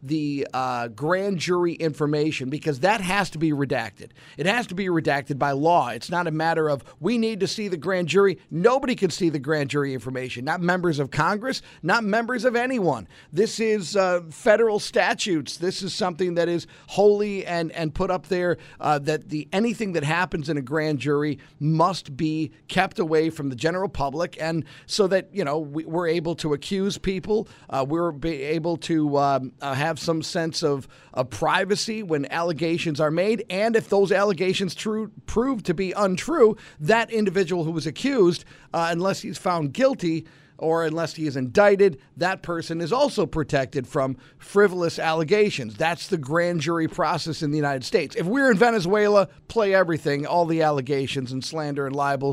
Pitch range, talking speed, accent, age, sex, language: 150-195 Hz, 185 wpm, American, 50-69, male, English